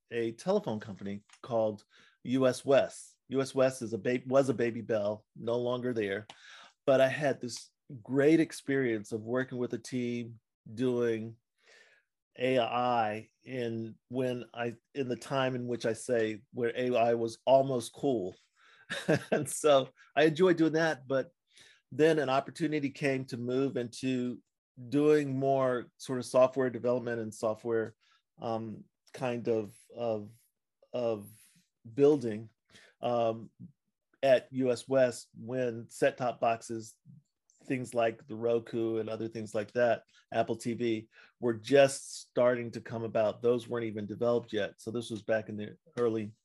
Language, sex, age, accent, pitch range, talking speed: English, male, 40-59, American, 115-130 Hz, 145 wpm